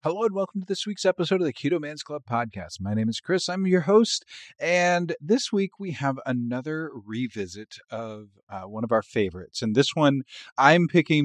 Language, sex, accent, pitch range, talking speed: English, male, American, 100-135 Hz, 205 wpm